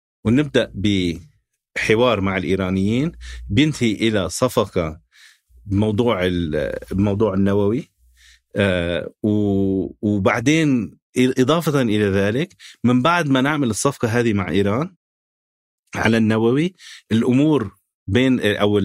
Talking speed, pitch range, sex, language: 85 wpm, 95-130 Hz, male, Arabic